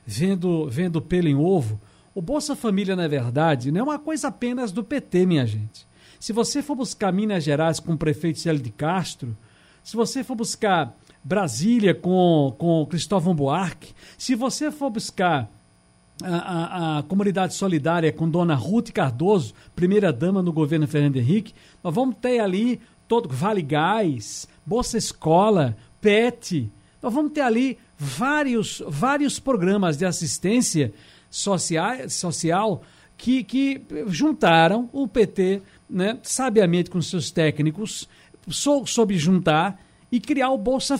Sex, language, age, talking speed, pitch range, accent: male, Portuguese, 60-79, 140 wpm, 160-235 Hz, Brazilian